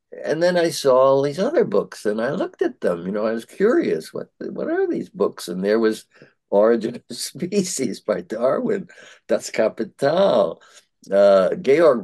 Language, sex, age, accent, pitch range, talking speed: English, male, 60-79, American, 105-145 Hz, 175 wpm